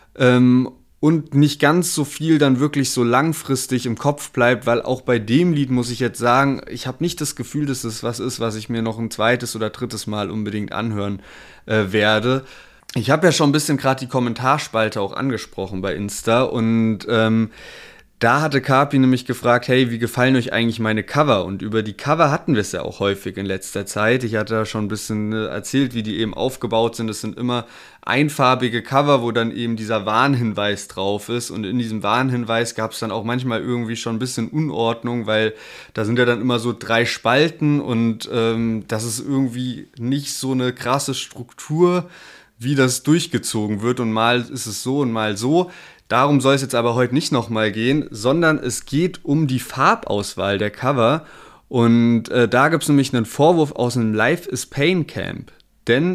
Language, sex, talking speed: German, male, 195 wpm